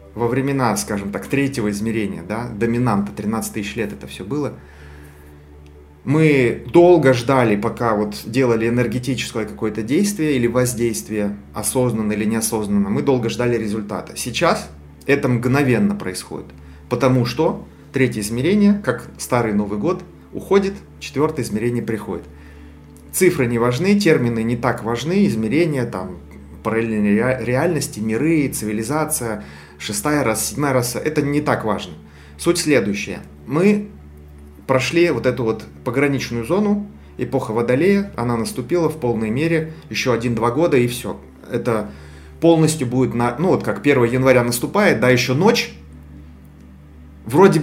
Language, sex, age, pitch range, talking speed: Russian, male, 30-49, 105-145 Hz, 130 wpm